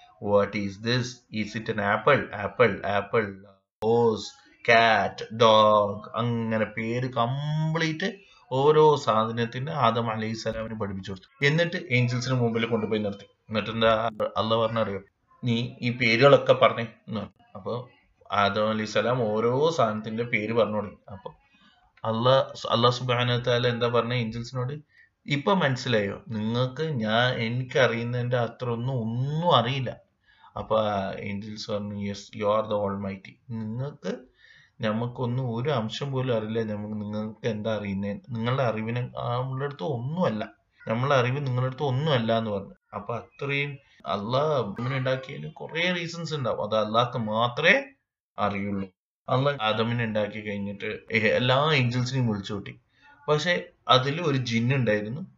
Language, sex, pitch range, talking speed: Malayalam, male, 110-130 Hz, 110 wpm